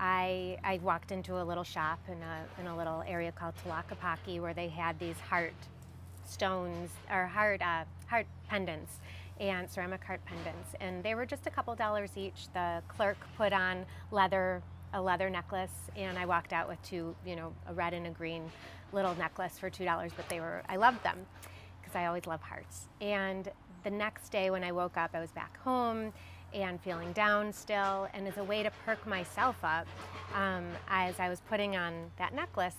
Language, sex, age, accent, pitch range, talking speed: English, female, 30-49, American, 165-205 Hz, 195 wpm